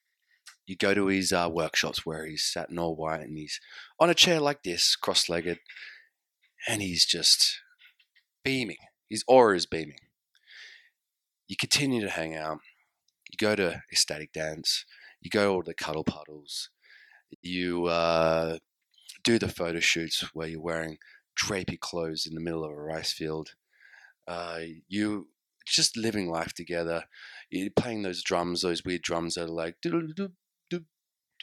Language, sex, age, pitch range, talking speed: English, male, 30-49, 80-130 Hz, 155 wpm